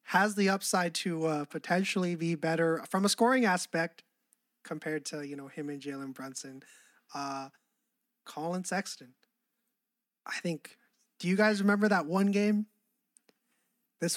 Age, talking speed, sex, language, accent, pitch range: 20-39, 140 wpm, male, English, American, 160-230 Hz